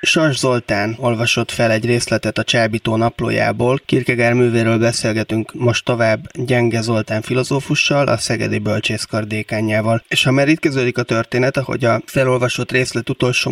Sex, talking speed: male, 140 wpm